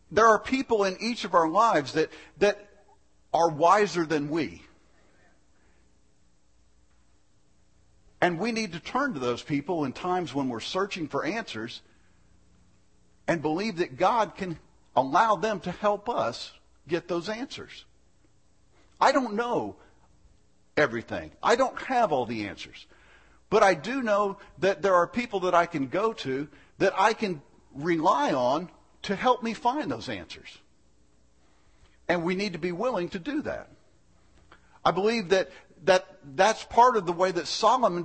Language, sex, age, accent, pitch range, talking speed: English, male, 50-69, American, 145-210 Hz, 150 wpm